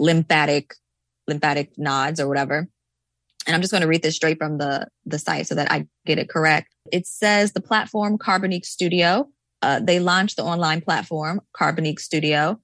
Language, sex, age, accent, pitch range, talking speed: English, female, 20-39, American, 155-200 Hz, 175 wpm